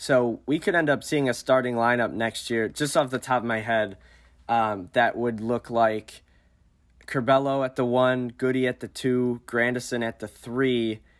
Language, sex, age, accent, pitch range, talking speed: English, male, 20-39, American, 110-125 Hz, 190 wpm